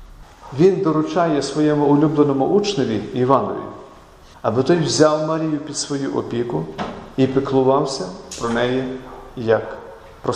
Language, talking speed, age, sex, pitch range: Ukrainian, 110 wpm, 40-59, male, 125-160 Hz